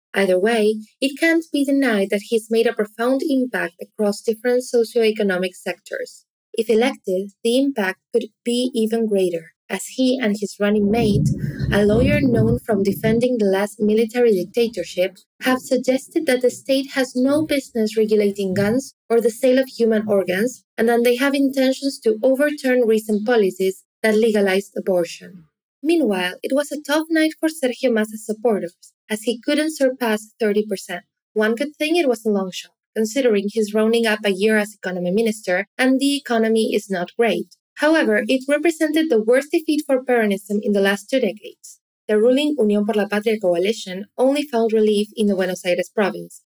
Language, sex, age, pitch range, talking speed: English, female, 20-39, 205-255 Hz, 170 wpm